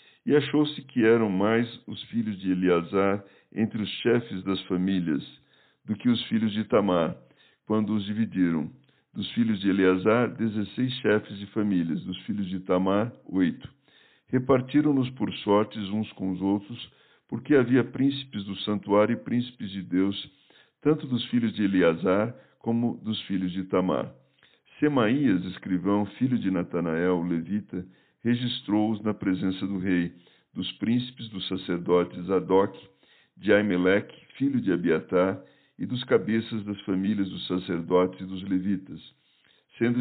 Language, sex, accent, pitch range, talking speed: Portuguese, male, Brazilian, 95-115 Hz, 140 wpm